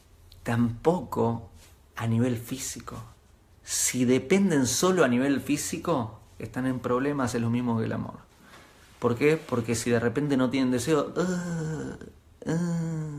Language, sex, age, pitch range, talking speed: Spanish, male, 30-49, 105-125 Hz, 135 wpm